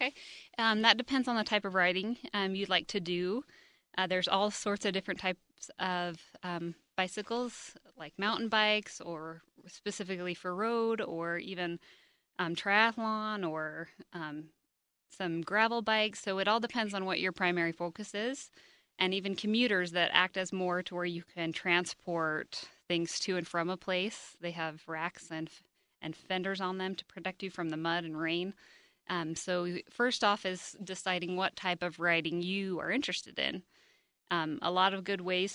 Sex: female